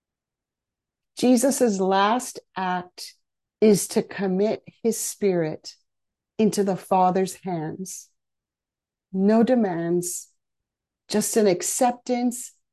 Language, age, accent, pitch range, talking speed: English, 50-69, American, 180-230 Hz, 80 wpm